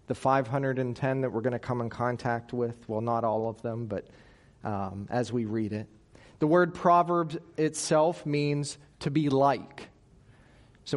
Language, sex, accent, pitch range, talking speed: English, male, American, 125-160 Hz, 165 wpm